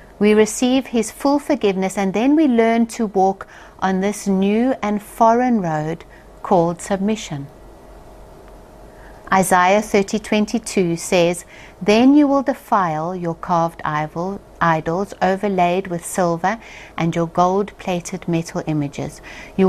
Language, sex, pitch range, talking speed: English, female, 160-215 Hz, 115 wpm